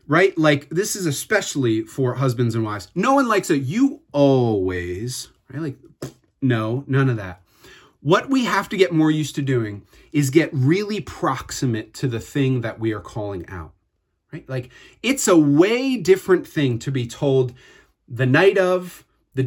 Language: English